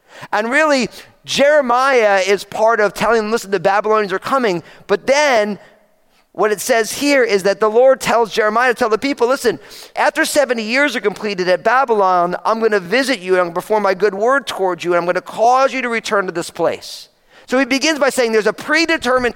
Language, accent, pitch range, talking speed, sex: English, American, 205-270 Hz, 210 wpm, male